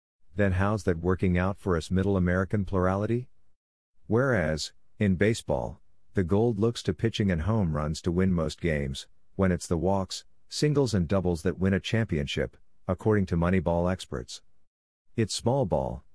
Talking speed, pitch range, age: 160 wpm, 85-105 Hz, 50-69